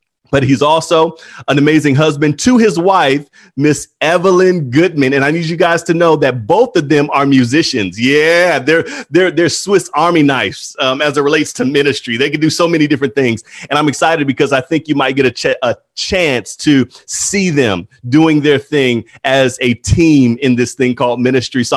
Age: 30-49